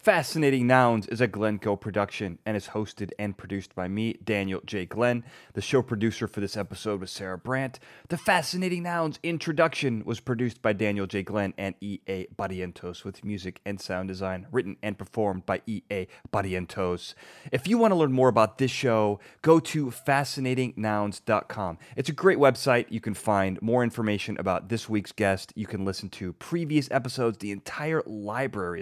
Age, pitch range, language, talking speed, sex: 30-49, 100-140 Hz, English, 175 wpm, male